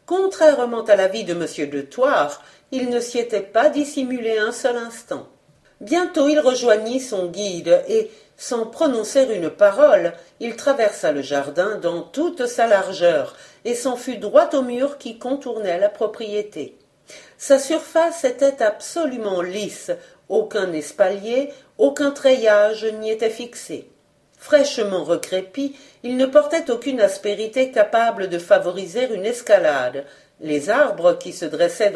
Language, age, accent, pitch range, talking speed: French, 50-69, French, 205-285 Hz, 135 wpm